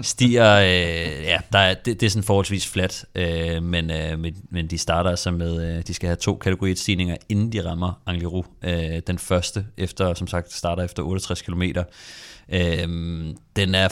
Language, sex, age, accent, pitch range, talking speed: Danish, male, 30-49, native, 85-100 Hz, 185 wpm